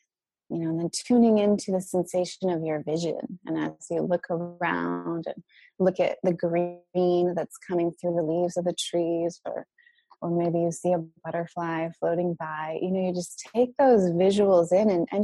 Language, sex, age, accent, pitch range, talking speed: English, female, 20-39, American, 170-220 Hz, 190 wpm